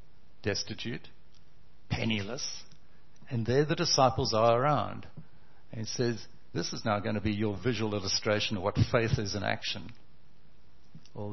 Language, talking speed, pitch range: English, 145 wpm, 105-130 Hz